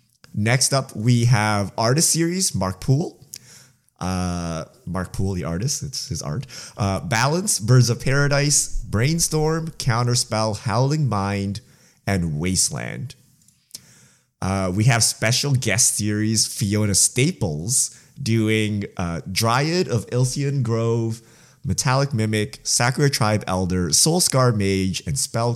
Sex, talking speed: male, 115 wpm